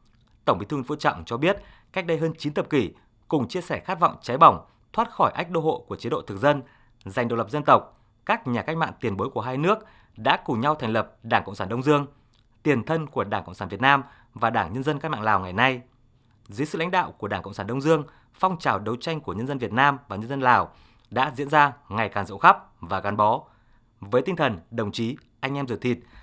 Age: 20-39